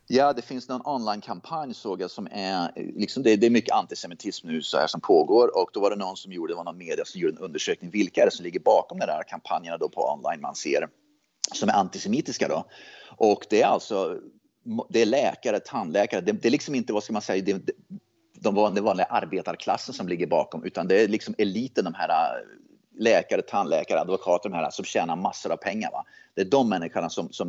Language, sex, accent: Swedish, male, native